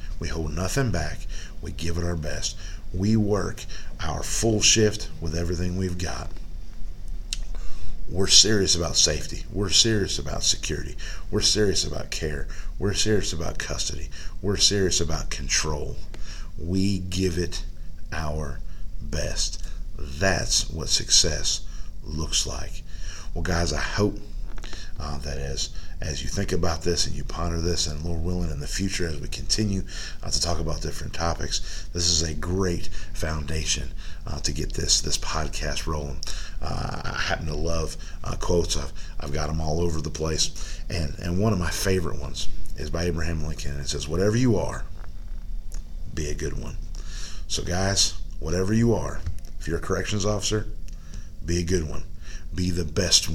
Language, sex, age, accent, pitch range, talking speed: English, male, 50-69, American, 75-95 Hz, 155 wpm